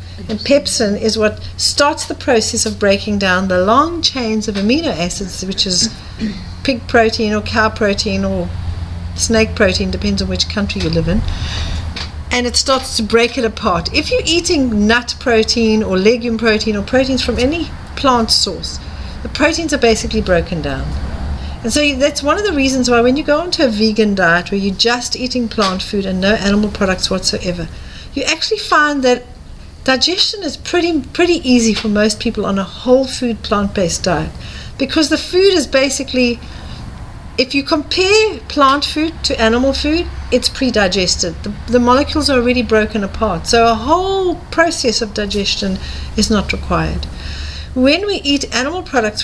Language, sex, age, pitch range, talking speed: English, female, 50-69, 195-270 Hz, 175 wpm